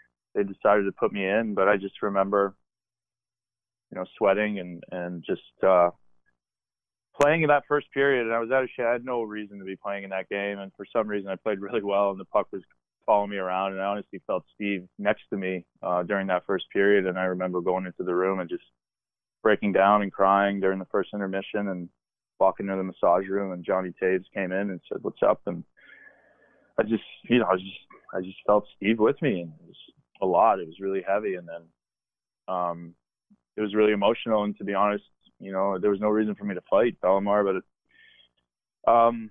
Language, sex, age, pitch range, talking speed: English, male, 20-39, 90-105 Hz, 220 wpm